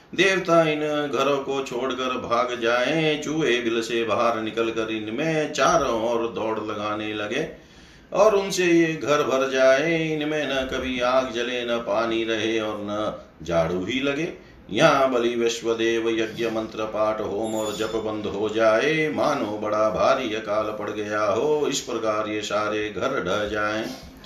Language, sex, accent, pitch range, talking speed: Hindi, male, native, 110-150 Hz, 160 wpm